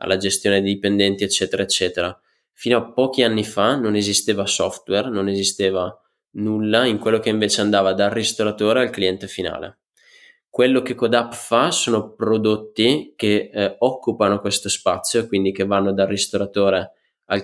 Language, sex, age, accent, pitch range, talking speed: Italian, male, 20-39, native, 95-110 Hz, 150 wpm